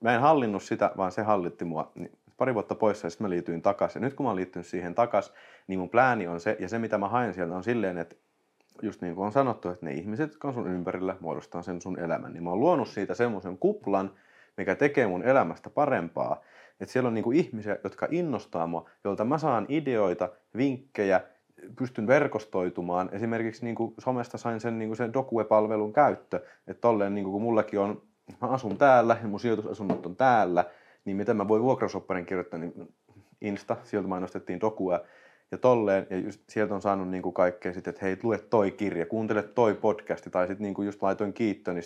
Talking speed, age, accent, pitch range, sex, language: 195 wpm, 30-49, native, 95-115 Hz, male, Finnish